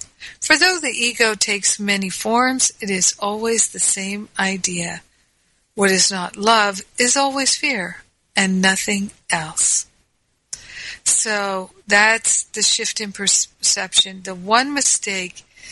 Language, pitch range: English, 190-225 Hz